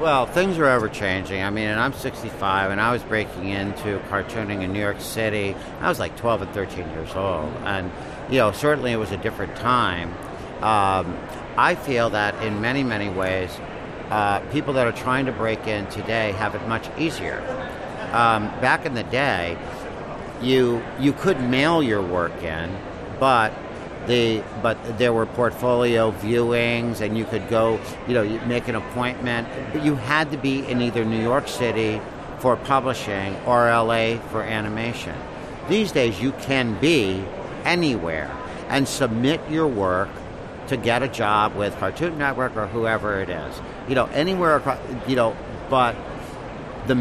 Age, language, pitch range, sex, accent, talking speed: 60-79, English, 100-130 Hz, male, American, 165 wpm